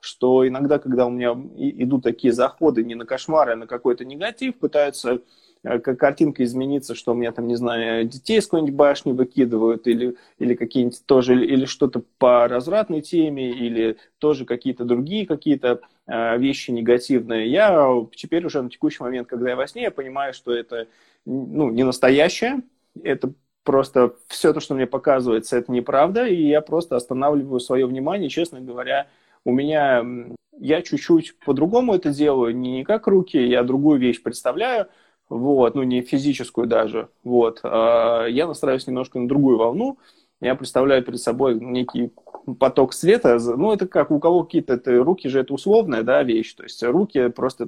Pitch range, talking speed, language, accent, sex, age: 120-150 Hz, 160 wpm, Russian, native, male, 20-39